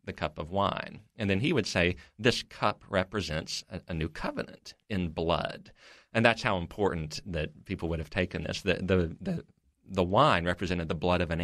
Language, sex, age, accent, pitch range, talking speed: English, male, 40-59, American, 85-100 Hz, 190 wpm